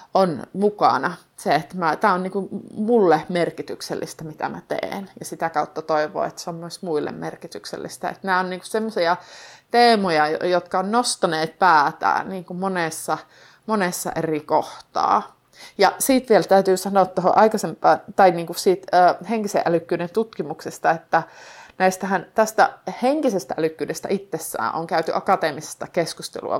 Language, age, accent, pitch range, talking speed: Finnish, 30-49, native, 155-195 Hz, 135 wpm